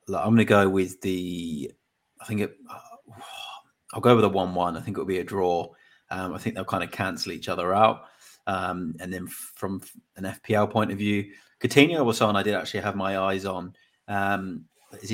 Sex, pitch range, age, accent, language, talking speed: male, 90-105 Hz, 30-49, British, English, 215 wpm